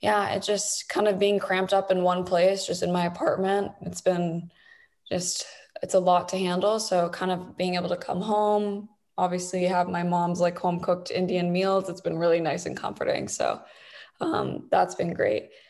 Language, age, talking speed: English, 20-39, 195 wpm